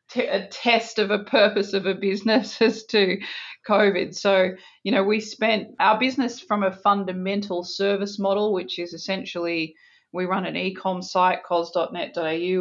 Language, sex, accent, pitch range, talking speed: English, female, Australian, 175-200 Hz, 155 wpm